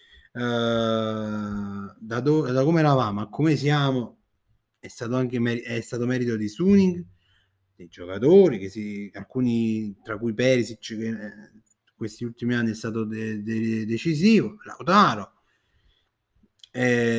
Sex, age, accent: male, 30-49, native